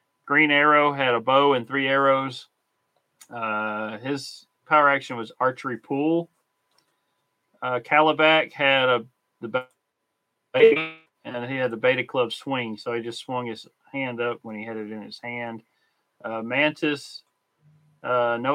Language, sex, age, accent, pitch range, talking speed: English, male, 40-59, American, 120-145 Hz, 150 wpm